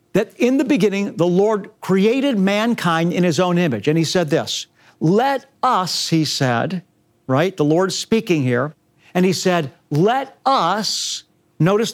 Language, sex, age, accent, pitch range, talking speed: English, male, 50-69, American, 165-215 Hz, 155 wpm